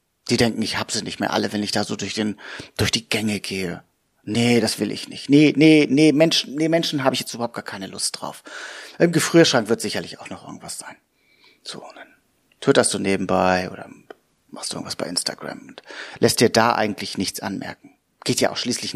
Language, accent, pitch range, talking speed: German, German, 105-135 Hz, 210 wpm